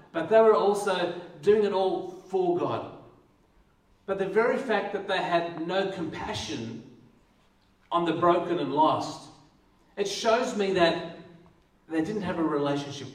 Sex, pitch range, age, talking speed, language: male, 160-210 Hz, 40-59, 145 wpm, English